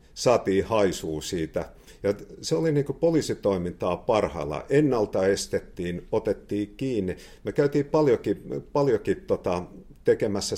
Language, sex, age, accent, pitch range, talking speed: Finnish, male, 50-69, native, 85-140 Hz, 110 wpm